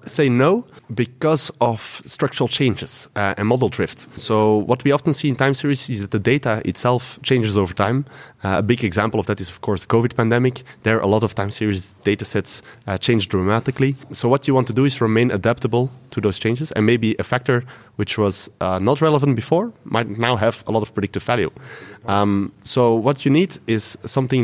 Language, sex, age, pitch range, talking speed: English, male, 30-49, 105-135 Hz, 215 wpm